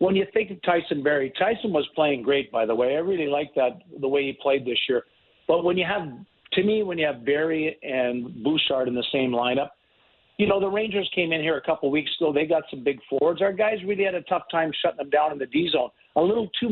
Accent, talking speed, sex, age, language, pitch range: American, 260 wpm, male, 50-69, English, 140-175 Hz